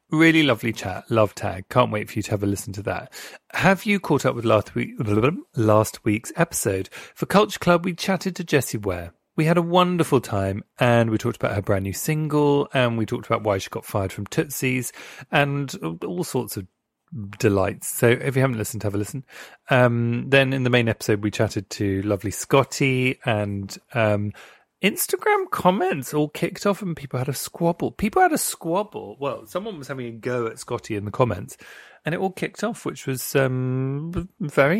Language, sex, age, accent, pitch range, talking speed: English, male, 30-49, British, 105-145 Hz, 200 wpm